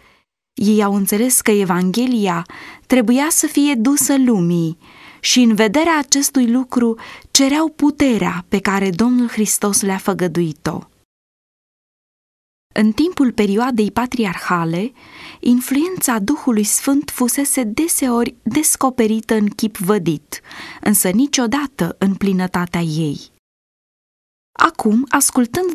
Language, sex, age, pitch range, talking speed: Romanian, female, 20-39, 205-270 Hz, 100 wpm